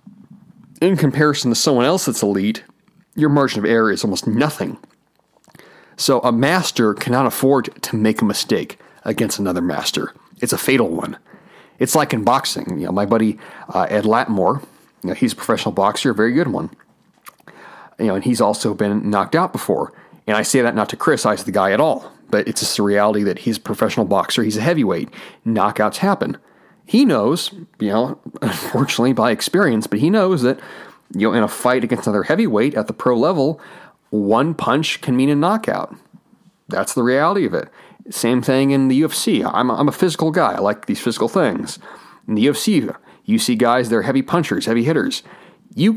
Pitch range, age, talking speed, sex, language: 115-190 Hz, 40-59, 195 wpm, male, English